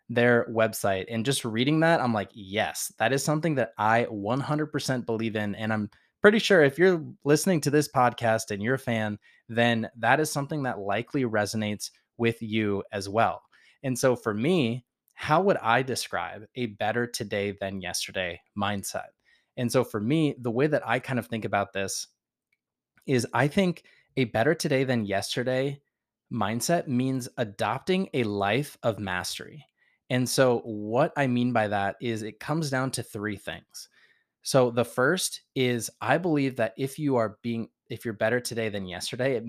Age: 20-39